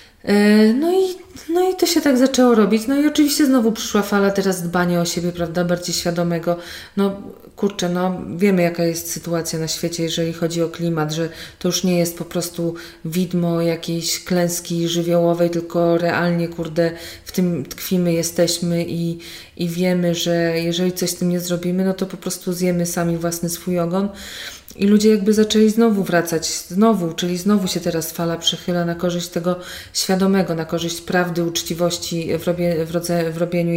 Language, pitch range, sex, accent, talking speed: Polish, 170-200 Hz, female, native, 175 wpm